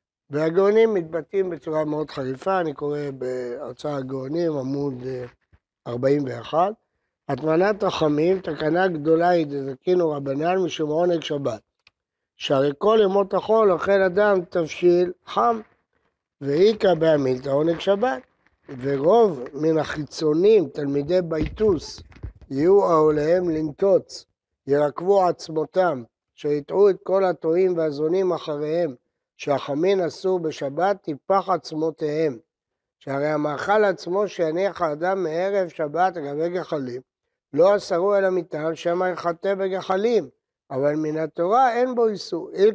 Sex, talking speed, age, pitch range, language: male, 110 wpm, 60-79, 150-190 Hz, Hebrew